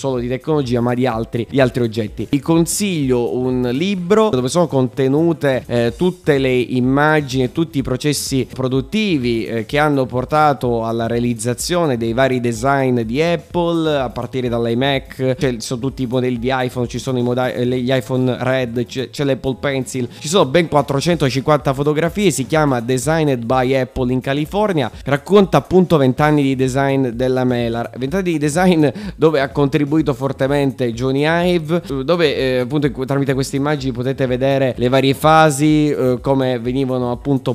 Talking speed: 165 wpm